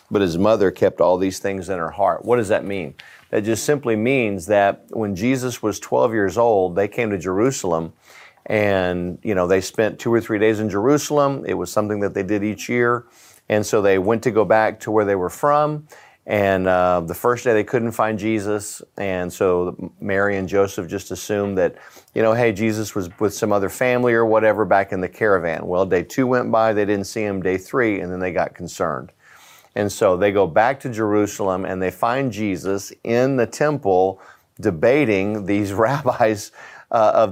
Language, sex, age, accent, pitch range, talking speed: English, male, 50-69, American, 100-120 Hz, 205 wpm